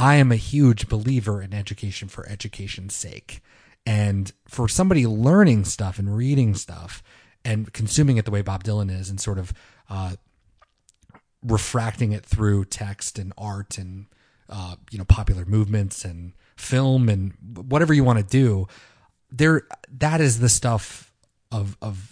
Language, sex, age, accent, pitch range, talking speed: English, male, 30-49, American, 100-125 Hz, 155 wpm